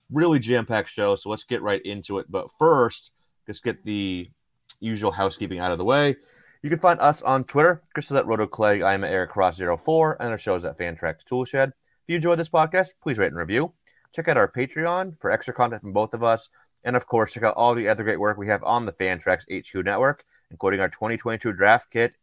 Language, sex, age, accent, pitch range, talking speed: English, male, 30-49, American, 95-125 Hz, 225 wpm